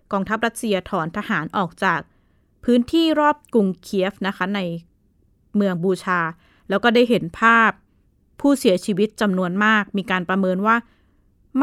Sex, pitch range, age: female, 180-225 Hz, 20-39